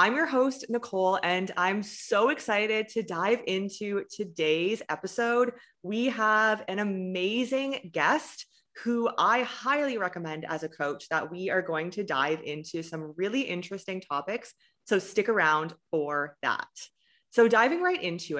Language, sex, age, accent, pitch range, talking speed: English, female, 20-39, American, 175-230 Hz, 145 wpm